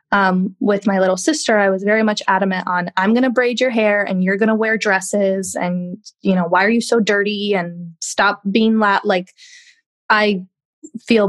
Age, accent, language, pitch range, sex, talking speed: 20-39, American, English, 195-230 Hz, female, 200 wpm